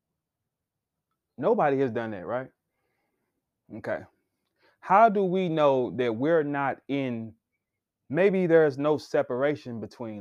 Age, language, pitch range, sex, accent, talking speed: 20-39, English, 115-145 Hz, male, American, 110 wpm